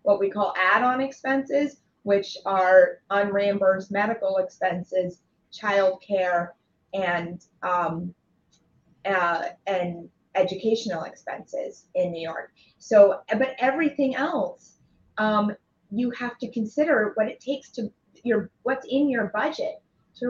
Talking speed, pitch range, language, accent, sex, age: 115 wpm, 200-270 Hz, English, American, female, 30-49